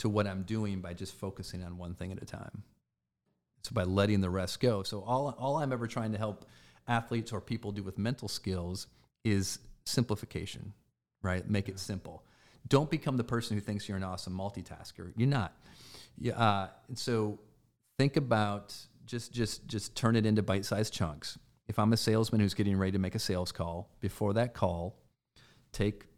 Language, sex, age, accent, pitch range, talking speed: English, male, 40-59, American, 95-115 Hz, 190 wpm